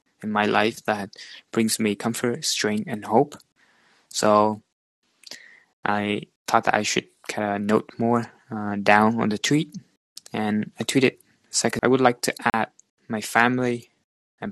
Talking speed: 150 wpm